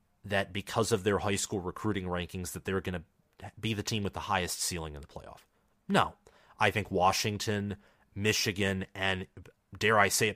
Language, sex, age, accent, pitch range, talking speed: English, male, 30-49, American, 90-110 Hz, 185 wpm